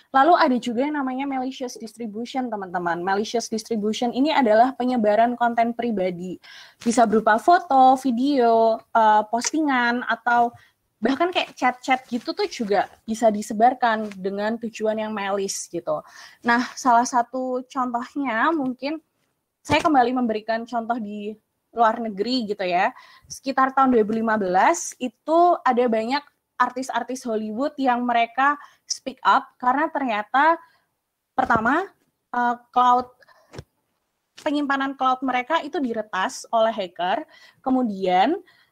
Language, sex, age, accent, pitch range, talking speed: Indonesian, female, 20-39, native, 220-270 Hz, 110 wpm